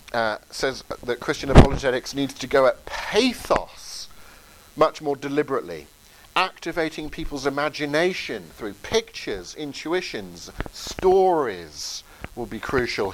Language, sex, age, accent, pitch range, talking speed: English, male, 50-69, British, 120-165 Hz, 105 wpm